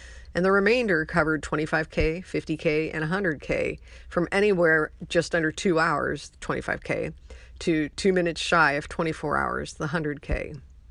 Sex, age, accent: female, 50-69, American